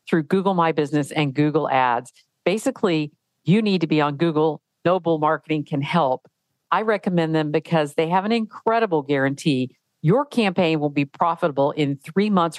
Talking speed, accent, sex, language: 165 wpm, American, female, English